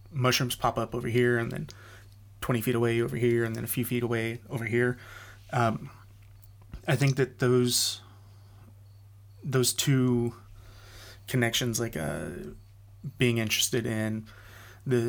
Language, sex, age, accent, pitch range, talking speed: English, male, 30-49, American, 100-120 Hz, 135 wpm